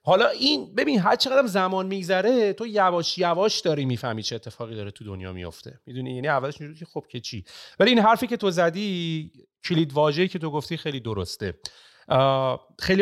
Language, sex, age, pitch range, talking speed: Persian, male, 30-49, 130-185 Hz, 185 wpm